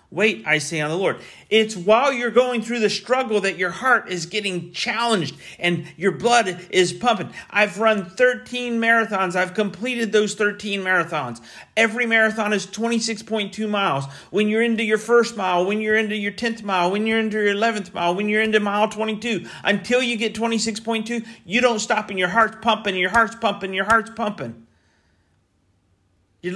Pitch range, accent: 170-220 Hz, American